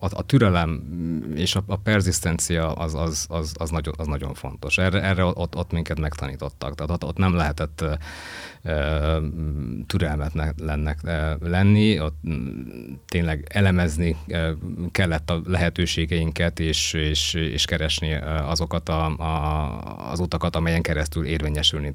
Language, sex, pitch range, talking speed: Hungarian, male, 75-85 Hz, 100 wpm